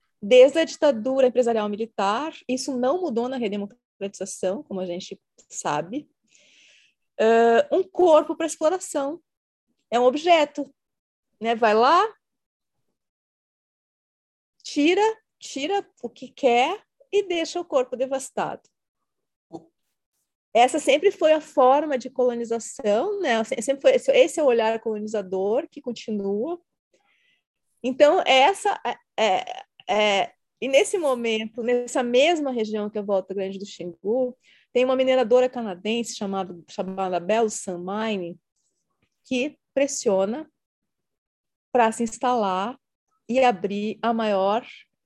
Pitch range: 210-295 Hz